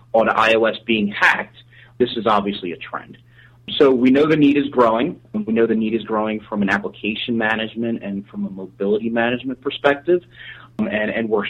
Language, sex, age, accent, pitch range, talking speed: English, male, 30-49, American, 105-125 Hz, 190 wpm